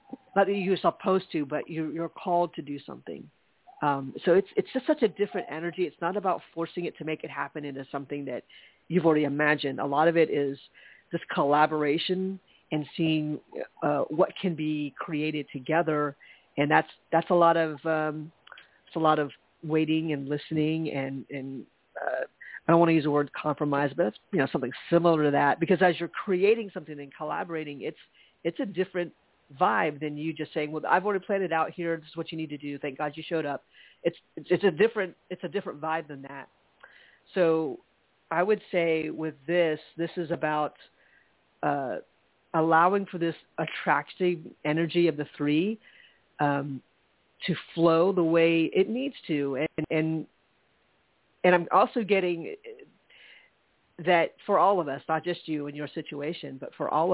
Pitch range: 150-175 Hz